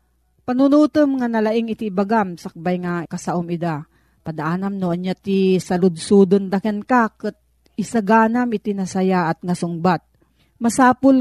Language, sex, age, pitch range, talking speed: Filipino, female, 40-59, 175-225 Hz, 110 wpm